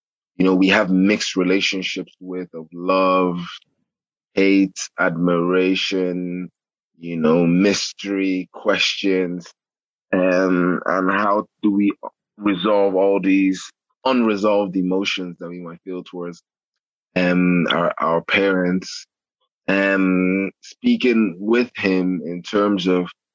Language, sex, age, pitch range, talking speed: English, male, 20-39, 90-95 Hz, 105 wpm